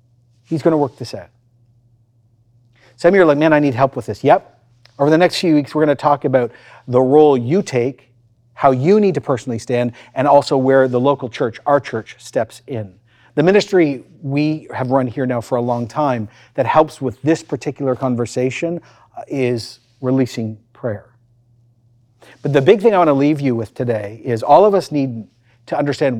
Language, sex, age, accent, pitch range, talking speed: English, male, 40-59, American, 120-155 Hz, 190 wpm